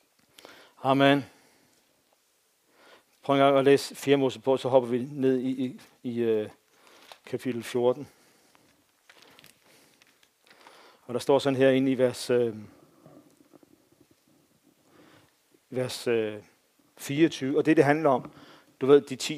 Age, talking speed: 50-69, 120 wpm